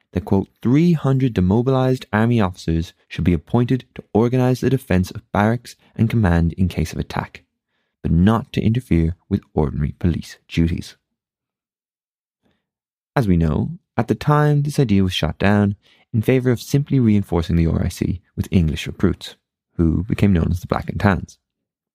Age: 20-39